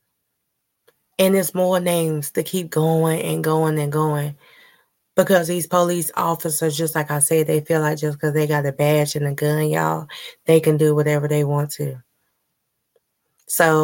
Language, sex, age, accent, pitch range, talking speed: English, female, 20-39, American, 150-165 Hz, 175 wpm